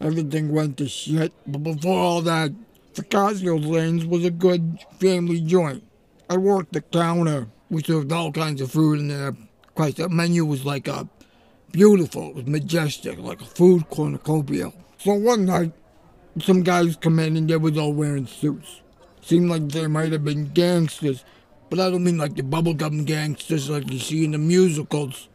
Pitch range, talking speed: 145-170 Hz, 180 wpm